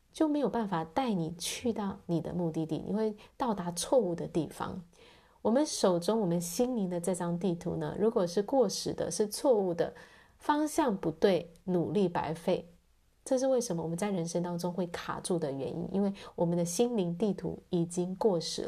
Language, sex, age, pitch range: Chinese, female, 30-49, 165-225 Hz